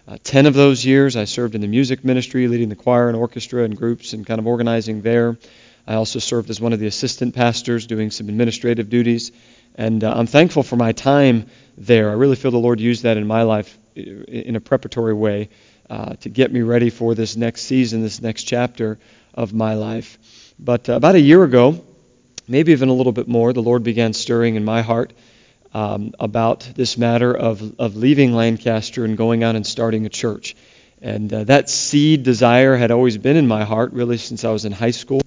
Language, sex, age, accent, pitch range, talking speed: English, male, 40-59, American, 110-125 Hz, 215 wpm